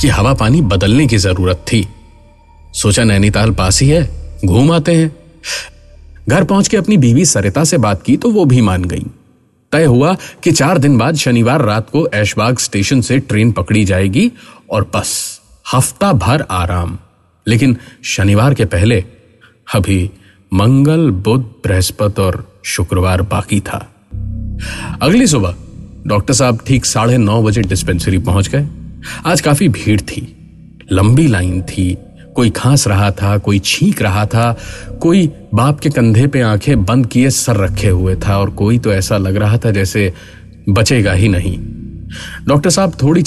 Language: Hindi